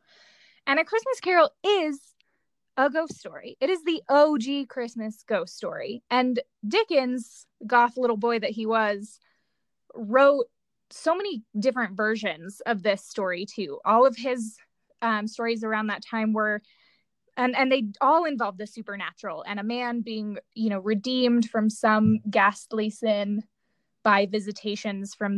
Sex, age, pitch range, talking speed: female, 20-39, 210-275 Hz, 145 wpm